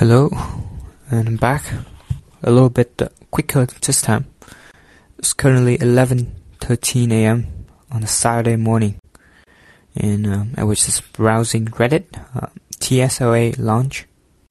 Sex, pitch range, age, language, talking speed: male, 100-120 Hz, 20-39, English, 120 wpm